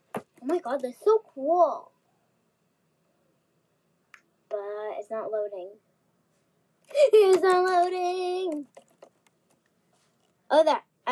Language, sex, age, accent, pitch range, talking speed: English, female, 10-29, American, 205-300 Hz, 80 wpm